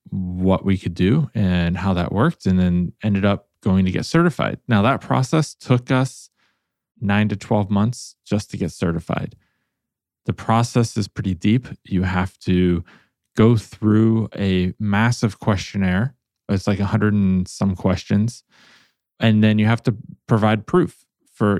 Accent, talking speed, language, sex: American, 155 wpm, English, male